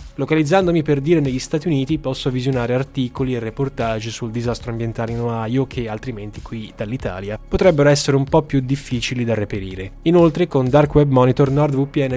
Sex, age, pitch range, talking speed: male, 10-29, 115-150 Hz, 170 wpm